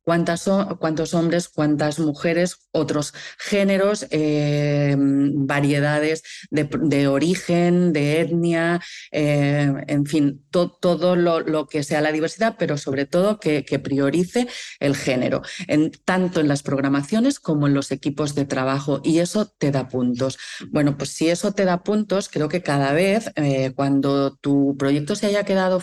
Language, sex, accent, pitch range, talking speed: Spanish, female, Spanish, 145-185 Hz, 150 wpm